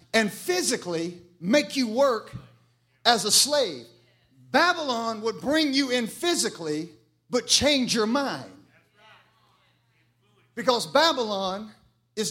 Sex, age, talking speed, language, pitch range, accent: male, 50-69, 100 wpm, English, 210-275 Hz, American